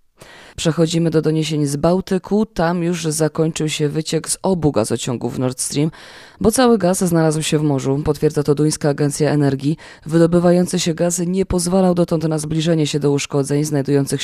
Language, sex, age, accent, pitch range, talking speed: Polish, female, 20-39, native, 145-185 Hz, 170 wpm